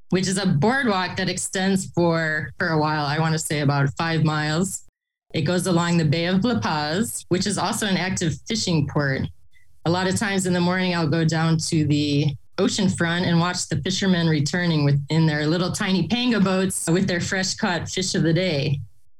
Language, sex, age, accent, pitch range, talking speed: English, female, 20-39, American, 150-190 Hz, 200 wpm